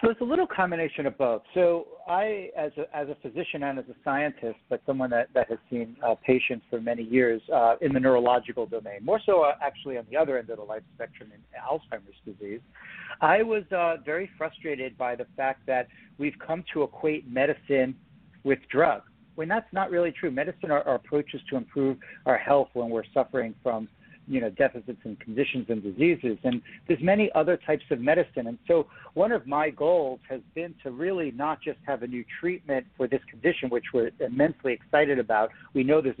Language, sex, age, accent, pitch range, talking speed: English, male, 60-79, American, 125-175 Hz, 205 wpm